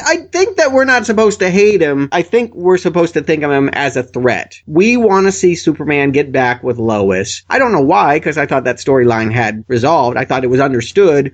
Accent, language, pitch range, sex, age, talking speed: American, English, 130-175 Hz, male, 30-49, 240 wpm